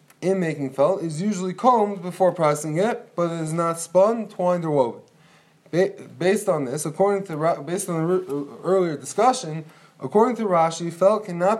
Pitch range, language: 160-195 Hz, English